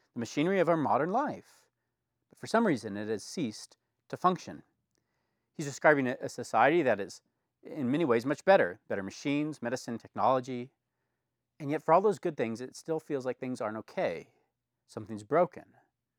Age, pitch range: 40-59, 125-185 Hz